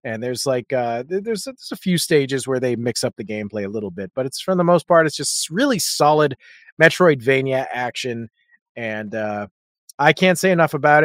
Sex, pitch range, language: male, 140-195 Hz, English